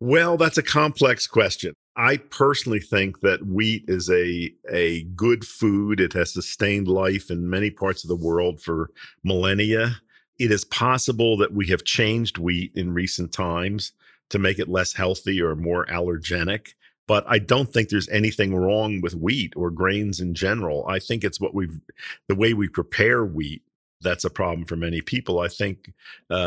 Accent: American